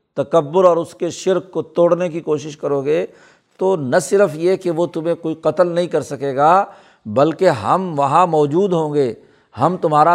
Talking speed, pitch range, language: 190 wpm, 145-180 Hz, Urdu